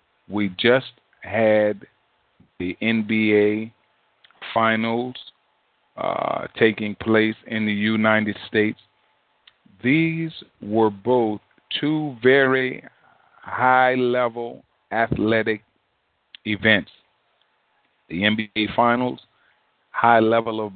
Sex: male